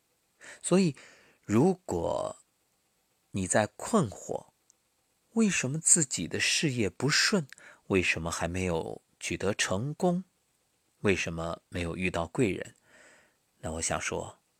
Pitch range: 95-145 Hz